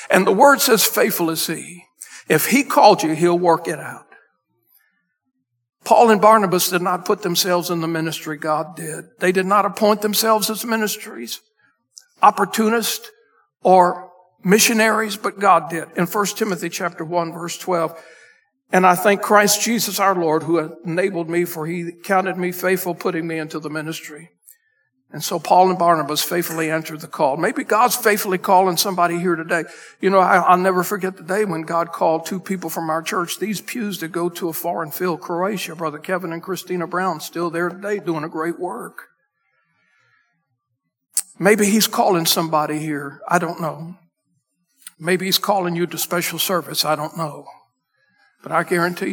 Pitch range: 165-200 Hz